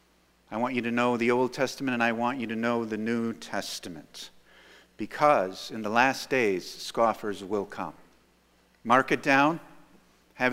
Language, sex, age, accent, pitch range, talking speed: English, male, 50-69, American, 115-150 Hz, 165 wpm